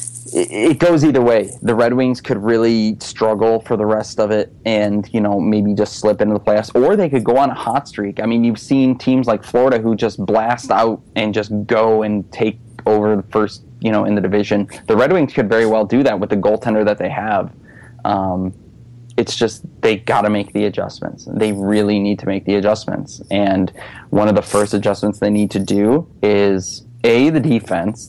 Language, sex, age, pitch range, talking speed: English, male, 20-39, 105-115 Hz, 215 wpm